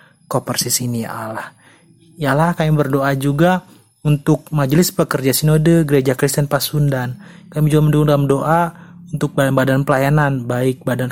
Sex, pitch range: male, 135-155 Hz